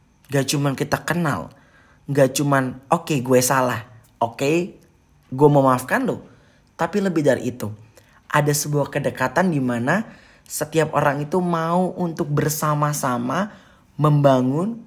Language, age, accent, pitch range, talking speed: Indonesian, 30-49, native, 125-160 Hz, 130 wpm